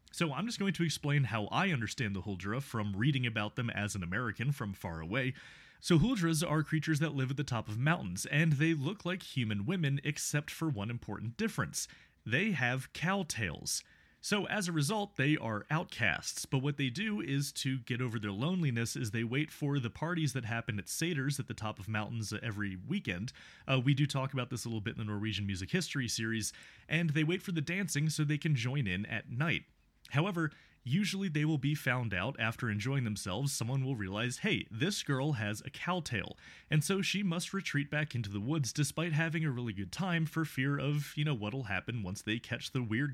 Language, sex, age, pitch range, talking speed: English, male, 30-49, 115-160 Hz, 215 wpm